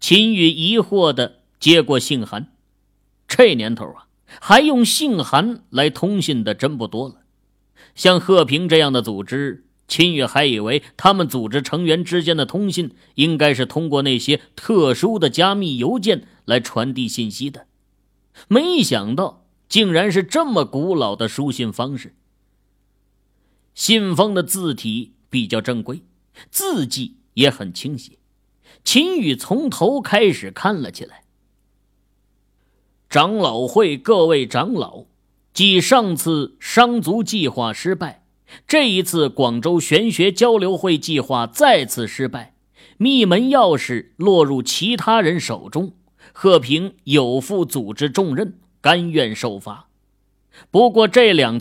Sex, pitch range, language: male, 115-185 Hz, Chinese